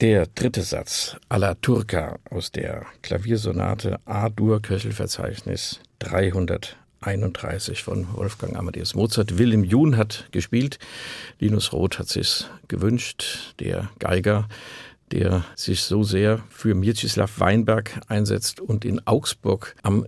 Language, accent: German, German